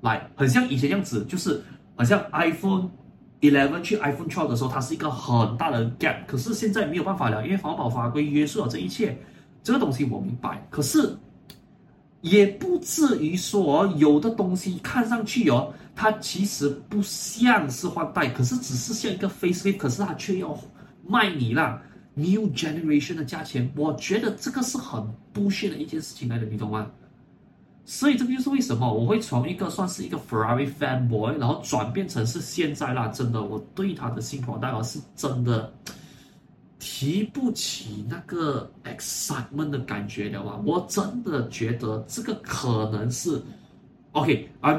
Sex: male